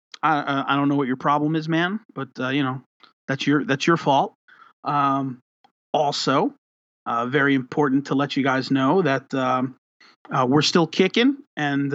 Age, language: 30-49, English